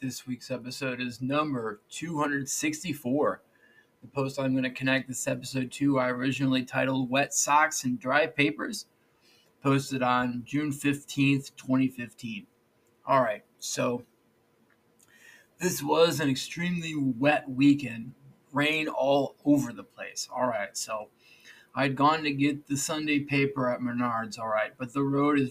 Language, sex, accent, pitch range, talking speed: English, male, American, 125-145 Hz, 130 wpm